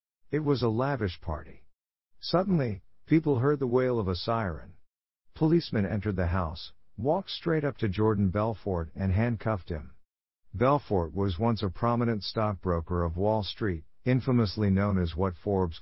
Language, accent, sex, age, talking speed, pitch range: English, American, male, 50-69, 150 wpm, 85-115 Hz